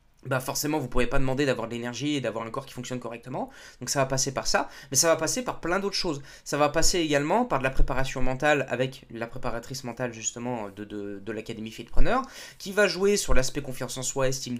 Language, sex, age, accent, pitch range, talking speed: French, male, 20-39, French, 130-170 Hz, 240 wpm